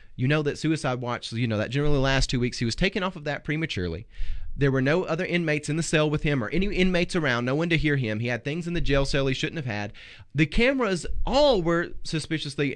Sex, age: male, 30-49